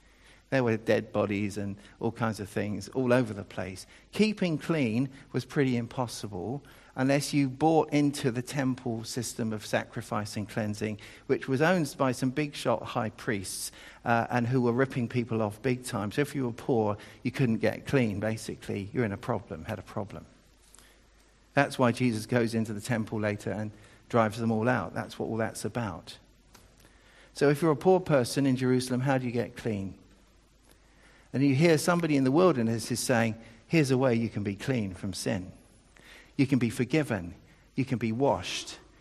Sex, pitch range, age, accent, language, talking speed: male, 110-140 Hz, 50-69, British, English, 185 wpm